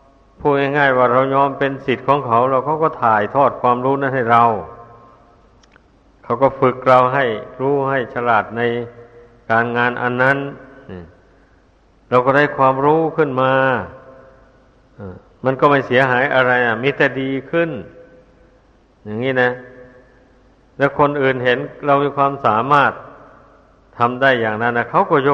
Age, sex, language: 60-79, male, Thai